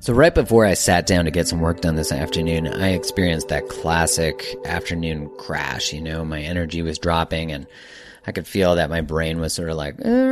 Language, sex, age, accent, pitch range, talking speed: English, male, 30-49, American, 90-115 Hz, 215 wpm